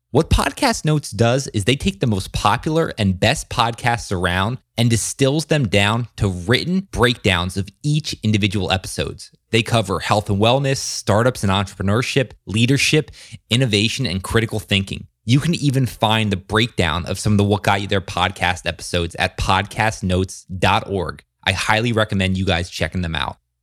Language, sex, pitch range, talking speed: English, male, 100-130 Hz, 165 wpm